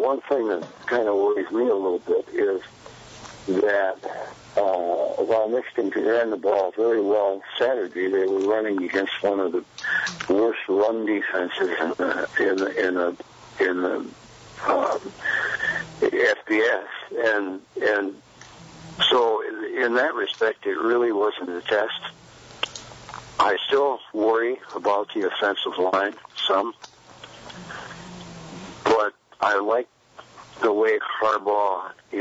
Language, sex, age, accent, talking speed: English, male, 60-79, American, 125 wpm